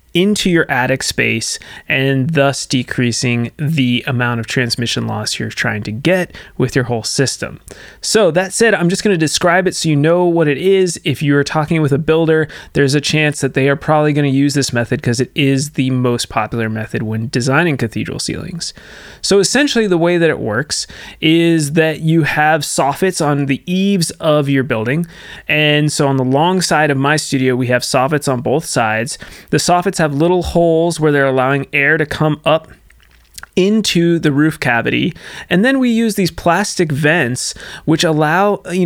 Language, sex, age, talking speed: English, male, 30-49, 185 wpm